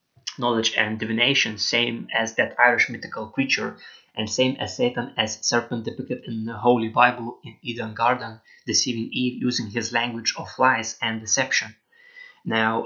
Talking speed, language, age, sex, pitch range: 155 wpm, English, 20-39, male, 110-125 Hz